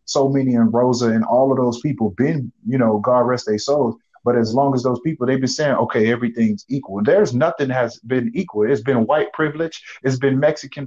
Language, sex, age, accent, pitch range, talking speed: English, male, 30-49, American, 120-160 Hz, 220 wpm